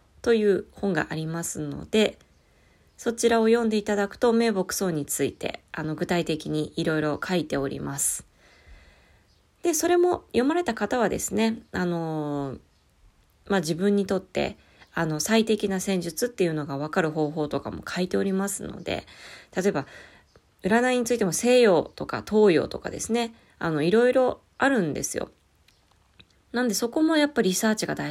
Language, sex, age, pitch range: Japanese, female, 20-39, 150-230 Hz